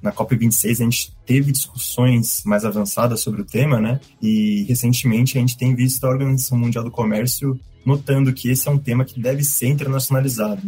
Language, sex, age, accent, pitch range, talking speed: Portuguese, male, 20-39, Brazilian, 115-135 Hz, 185 wpm